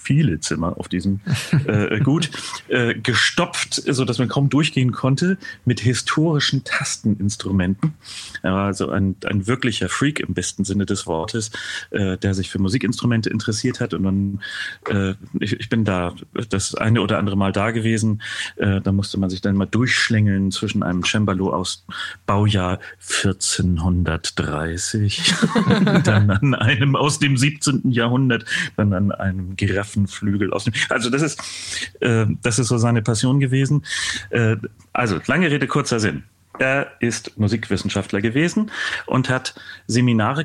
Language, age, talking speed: German, 30-49, 145 wpm